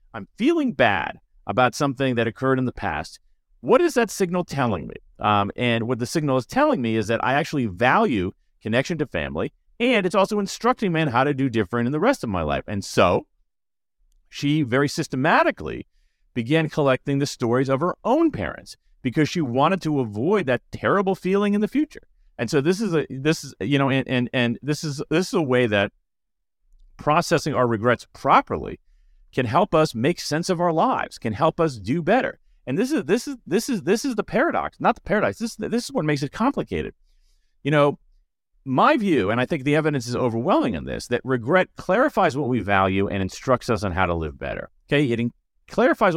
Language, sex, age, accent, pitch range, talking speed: English, male, 40-59, American, 115-175 Hz, 205 wpm